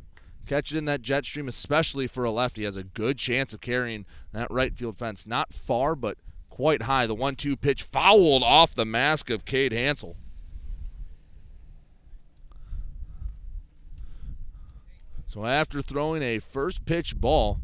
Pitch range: 85-135 Hz